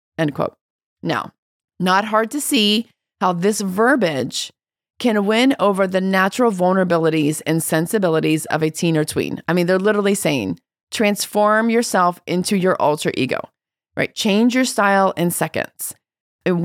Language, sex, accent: English, female, American